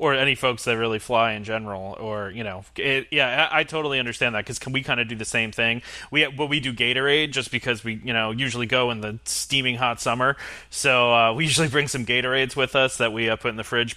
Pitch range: 115-140 Hz